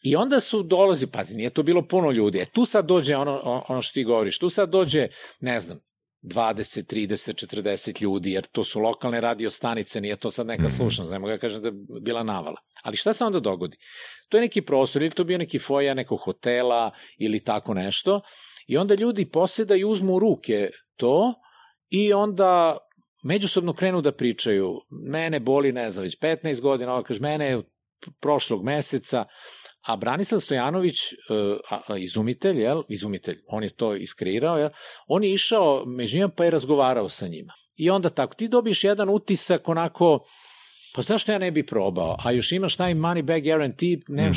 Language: Croatian